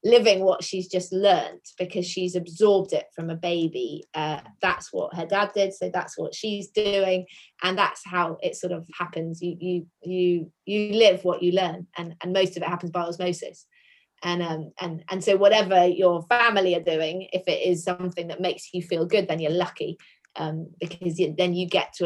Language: English